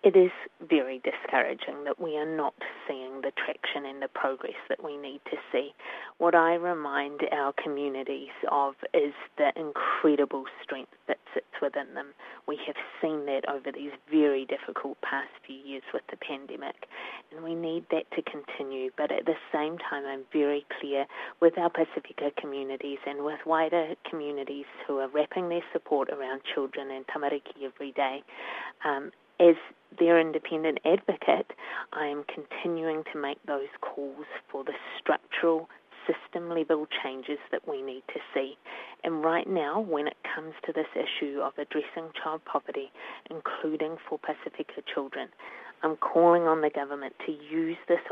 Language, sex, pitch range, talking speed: English, female, 140-165 Hz, 155 wpm